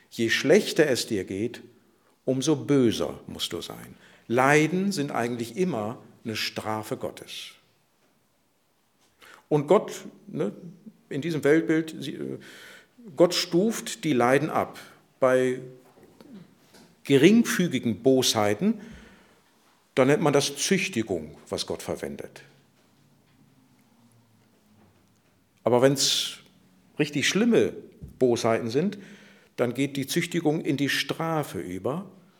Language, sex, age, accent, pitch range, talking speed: German, male, 50-69, German, 120-175 Hz, 100 wpm